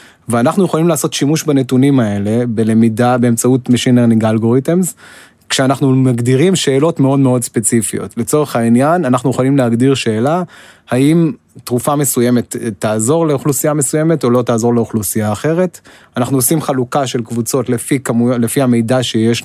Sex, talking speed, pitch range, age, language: male, 135 wpm, 120-140 Hz, 20-39, Hebrew